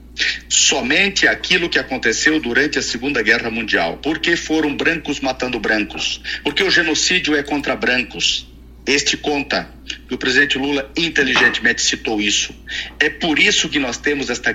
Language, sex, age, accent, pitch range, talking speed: Portuguese, male, 50-69, Brazilian, 110-150 Hz, 150 wpm